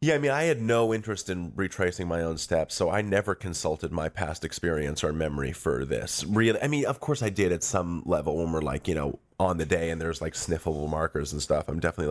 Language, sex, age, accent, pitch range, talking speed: English, male, 30-49, American, 80-100 Hz, 250 wpm